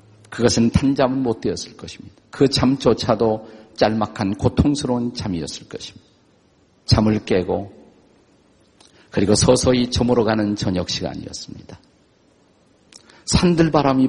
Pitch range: 100-135 Hz